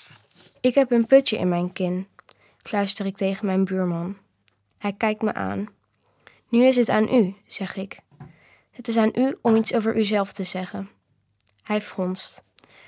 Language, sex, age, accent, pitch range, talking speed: Dutch, female, 20-39, Dutch, 185-225 Hz, 165 wpm